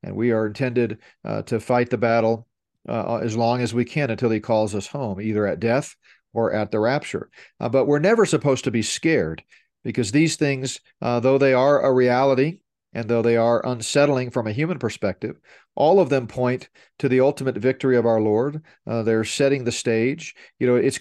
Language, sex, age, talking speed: English, male, 40-59, 205 wpm